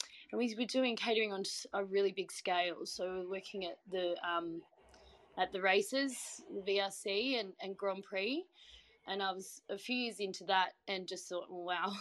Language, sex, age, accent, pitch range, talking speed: English, female, 20-39, Australian, 185-225 Hz, 195 wpm